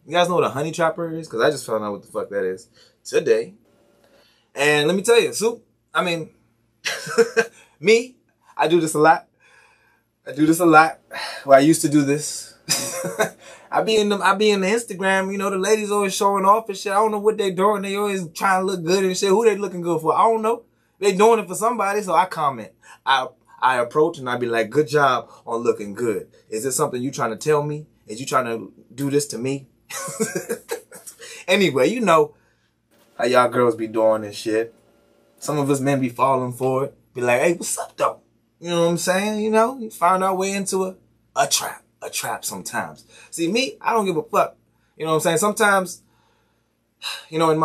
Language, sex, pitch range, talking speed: English, male, 145-215 Hz, 220 wpm